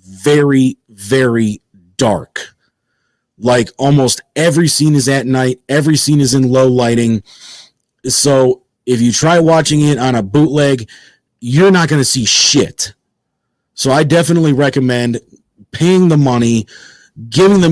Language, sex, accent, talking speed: English, male, American, 135 wpm